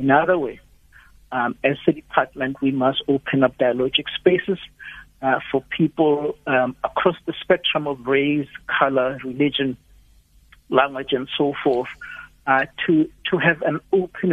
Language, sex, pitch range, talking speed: English, male, 130-160 Hz, 140 wpm